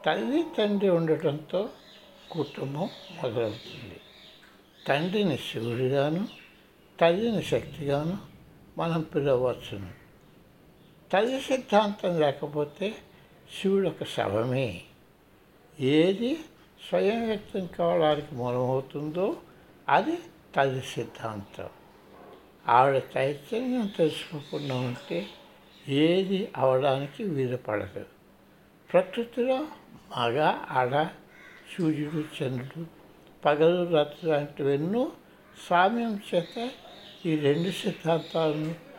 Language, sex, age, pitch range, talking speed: Telugu, male, 60-79, 135-195 Hz, 70 wpm